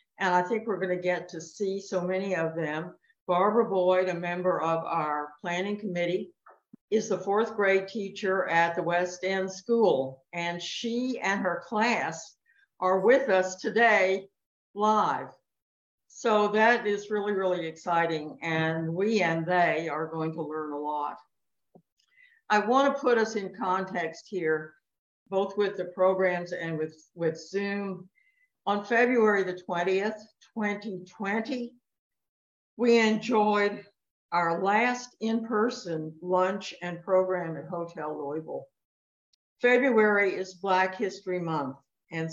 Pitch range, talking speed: 170-210 Hz, 130 wpm